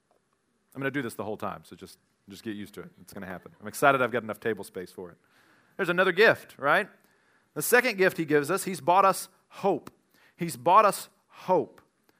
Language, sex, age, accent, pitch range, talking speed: English, male, 40-59, American, 140-175 Hz, 225 wpm